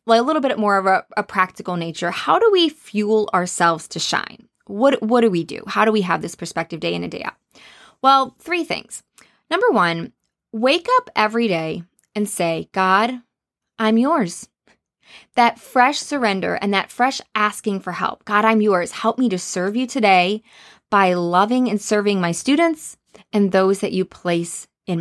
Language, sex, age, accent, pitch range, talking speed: English, female, 20-39, American, 185-245 Hz, 185 wpm